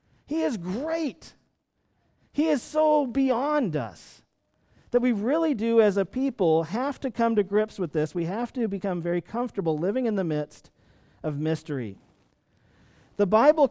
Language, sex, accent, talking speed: English, male, American, 160 wpm